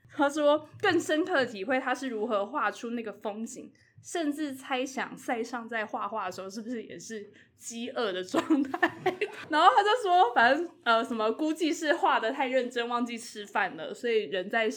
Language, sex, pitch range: Chinese, female, 195-260 Hz